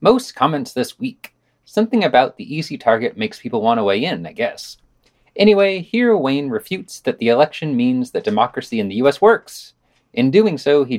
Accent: American